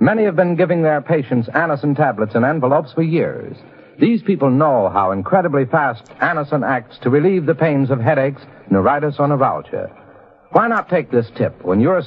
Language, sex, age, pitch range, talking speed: English, male, 60-79, 135-180 Hz, 180 wpm